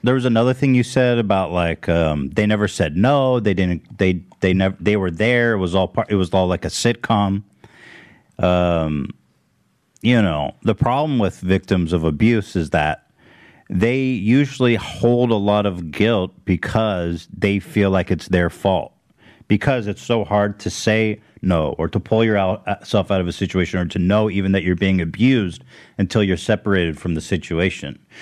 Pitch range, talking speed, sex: 90-115 Hz, 180 wpm, male